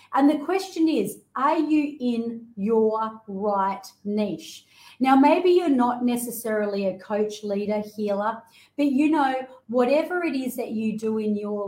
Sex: female